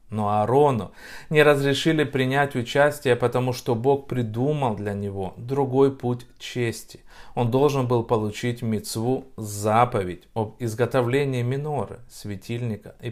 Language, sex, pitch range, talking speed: Russian, male, 105-130 Hz, 120 wpm